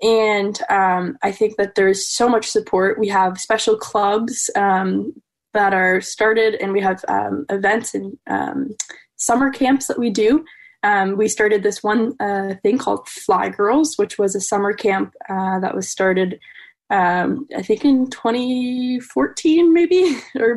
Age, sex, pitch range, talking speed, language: 10-29, female, 195-240 Hz, 160 wpm, English